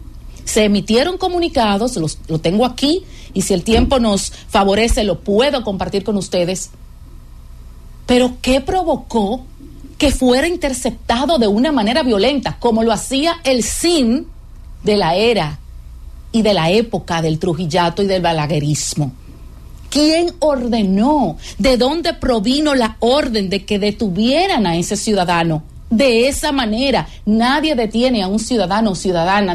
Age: 40-59